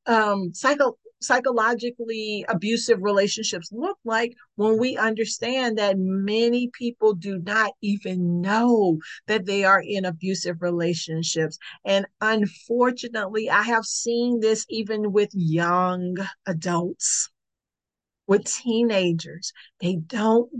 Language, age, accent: English, 50-69, American